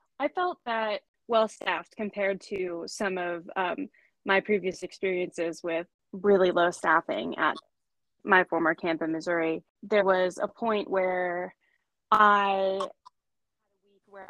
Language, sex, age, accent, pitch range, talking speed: English, female, 20-39, American, 170-200 Hz, 115 wpm